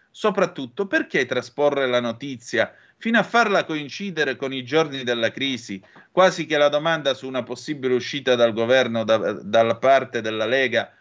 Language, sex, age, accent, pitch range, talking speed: Italian, male, 30-49, native, 115-160 Hz, 155 wpm